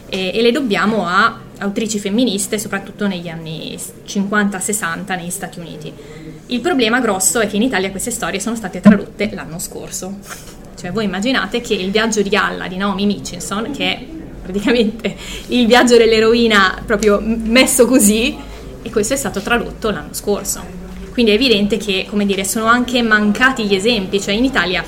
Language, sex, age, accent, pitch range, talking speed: Italian, female, 20-39, native, 195-230 Hz, 165 wpm